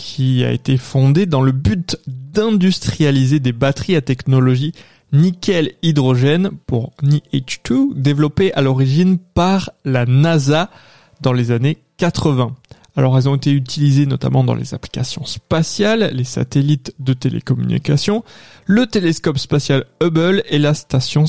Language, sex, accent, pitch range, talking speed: French, male, French, 130-165 Hz, 130 wpm